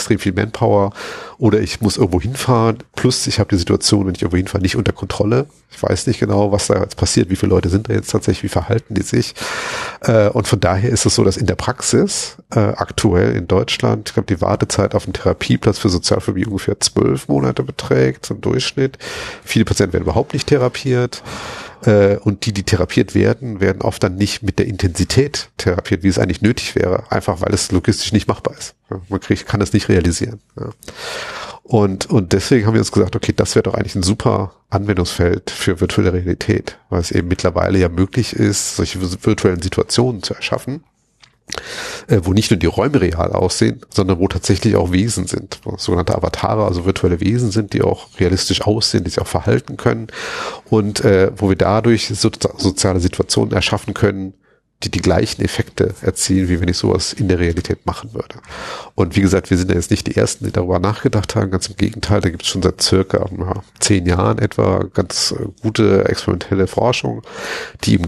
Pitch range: 95-110 Hz